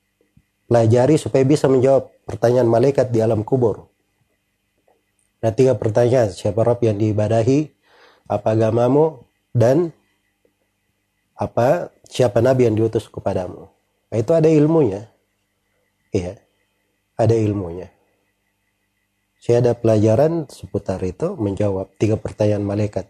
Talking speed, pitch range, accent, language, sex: 105 wpm, 100-125 Hz, native, Indonesian, male